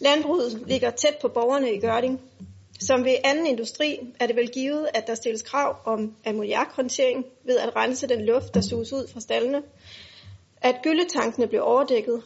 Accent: native